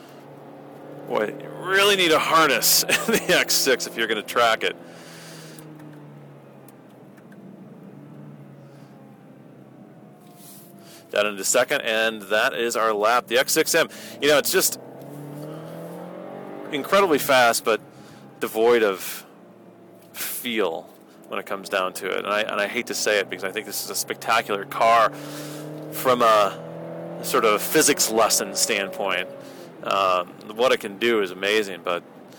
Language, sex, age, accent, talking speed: English, male, 40-59, American, 135 wpm